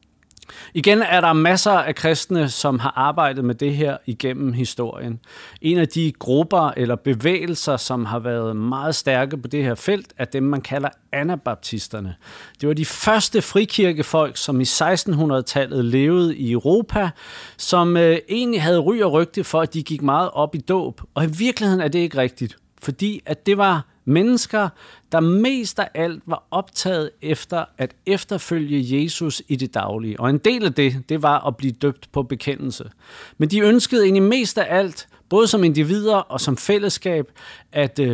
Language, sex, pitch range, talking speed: English, male, 135-185 Hz, 175 wpm